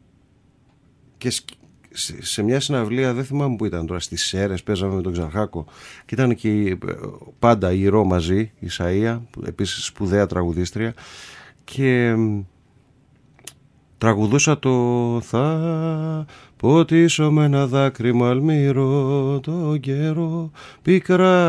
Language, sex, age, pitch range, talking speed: Greek, male, 30-49, 105-140 Hz, 105 wpm